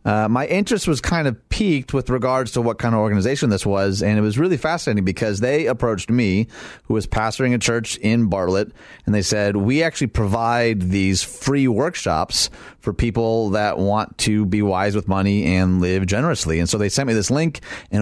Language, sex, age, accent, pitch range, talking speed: English, male, 30-49, American, 100-125 Hz, 205 wpm